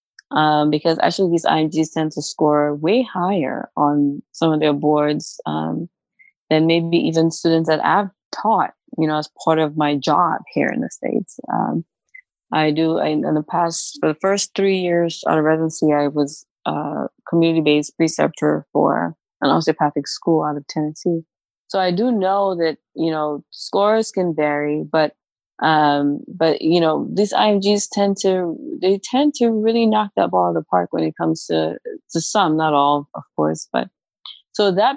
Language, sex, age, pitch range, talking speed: English, female, 20-39, 150-195 Hz, 180 wpm